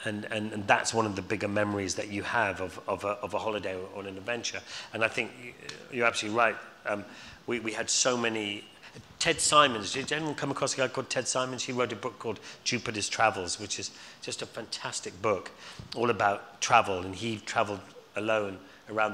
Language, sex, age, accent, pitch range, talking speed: English, male, 40-59, British, 100-120 Hz, 205 wpm